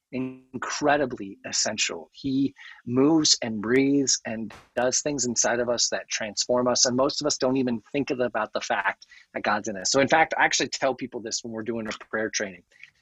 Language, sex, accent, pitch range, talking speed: English, male, American, 130-160 Hz, 200 wpm